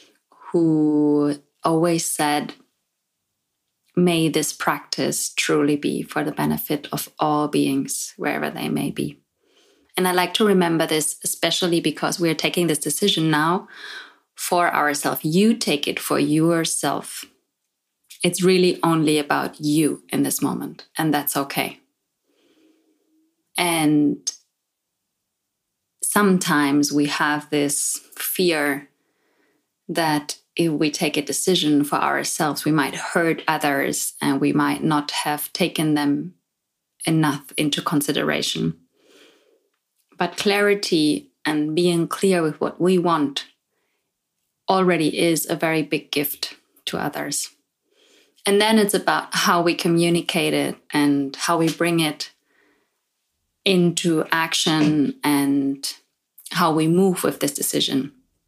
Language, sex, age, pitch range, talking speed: English, female, 20-39, 145-180 Hz, 120 wpm